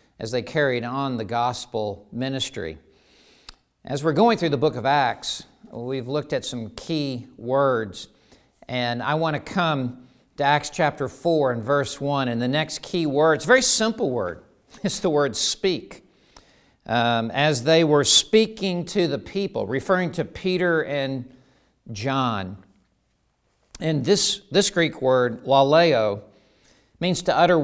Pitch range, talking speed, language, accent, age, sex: 130-180 Hz, 145 wpm, English, American, 50-69, male